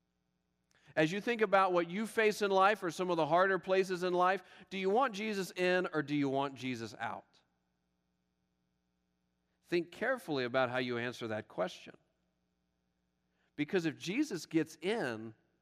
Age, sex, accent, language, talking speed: 40-59, male, American, English, 160 wpm